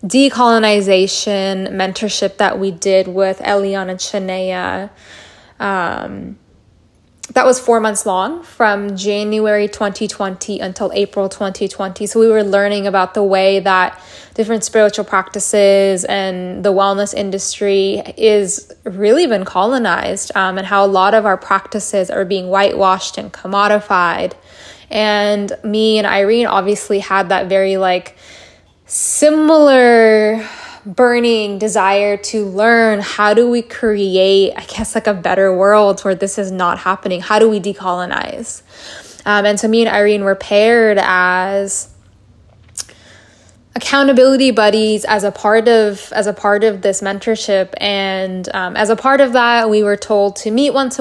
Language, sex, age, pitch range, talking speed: English, female, 20-39, 195-220 Hz, 140 wpm